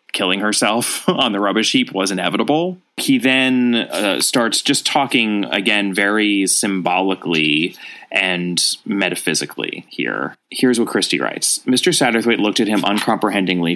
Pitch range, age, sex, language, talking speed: 90-120 Hz, 30-49, male, English, 130 wpm